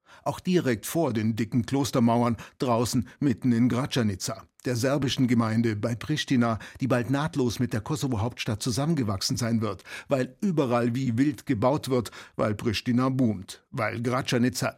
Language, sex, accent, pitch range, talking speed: German, male, German, 115-135 Hz, 140 wpm